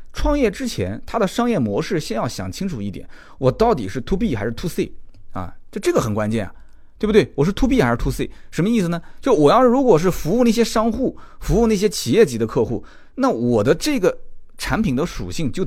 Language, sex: Chinese, male